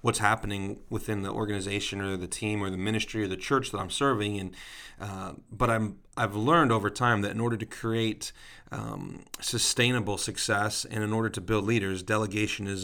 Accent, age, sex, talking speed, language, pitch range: American, 40-59, male, 190 wpm, English, 100-115 Hz